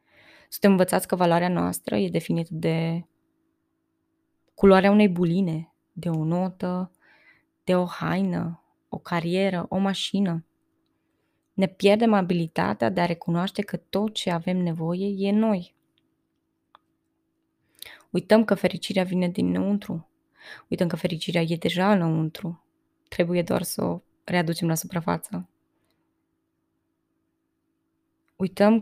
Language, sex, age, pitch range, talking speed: Romanian, female, 20-39, 175-210 Hz, 110 wpm